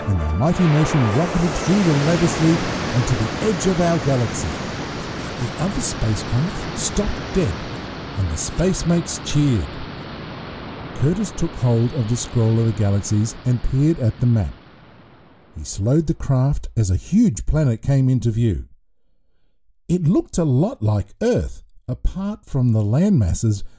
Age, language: 50-69, English